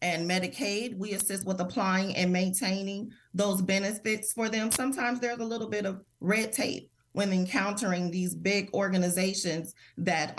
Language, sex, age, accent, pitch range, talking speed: English, female, 30-49, American, 175-215 Hz, 150 wpm